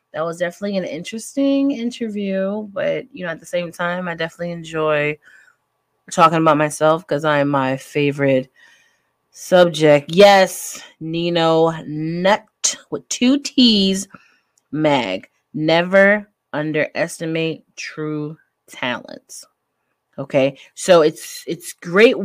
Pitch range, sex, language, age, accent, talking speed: 155-210 Hz, female, English, 30-49, American, 110 wpm